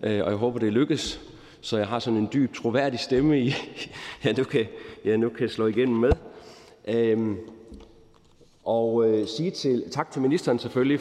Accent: native